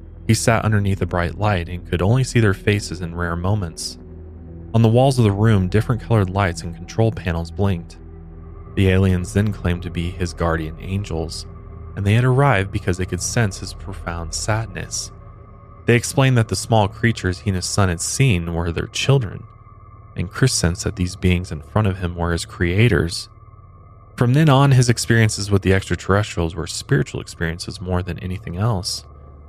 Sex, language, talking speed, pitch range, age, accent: male, English, 185 wpm, 90-110 Hz, 20-39, American